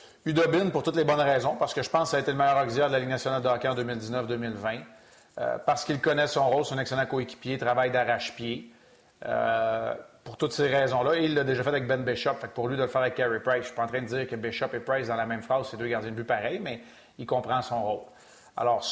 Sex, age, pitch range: male, 30-49, 125-145 Hz